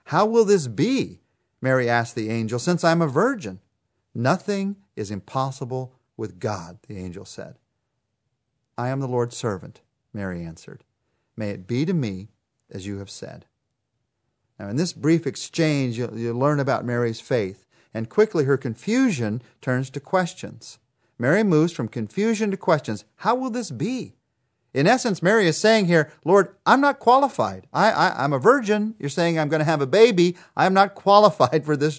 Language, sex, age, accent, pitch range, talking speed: English, male, 40-59, American, 115-160 Hz, 165 wpm